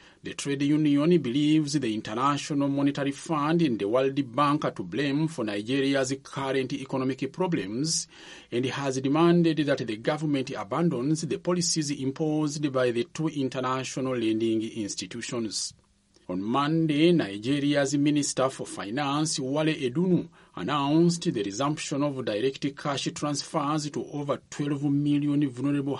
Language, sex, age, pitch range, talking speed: English, male, 40-59, 135-160 Hz, 130 wpm